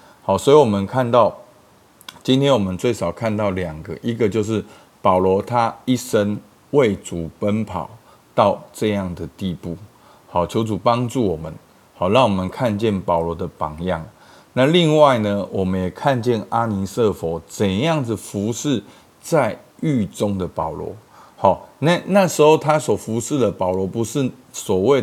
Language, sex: Chinese, male